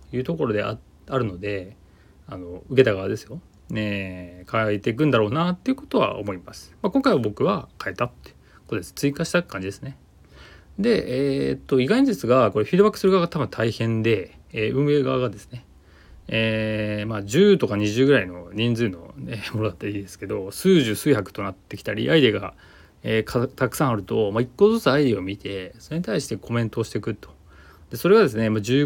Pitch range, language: 95-130 Hz, Japanese